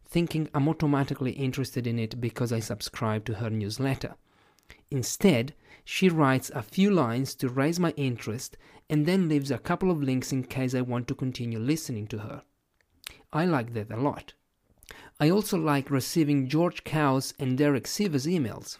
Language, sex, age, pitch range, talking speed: English, male, 40-59, 120-150 Hz, 170 wpm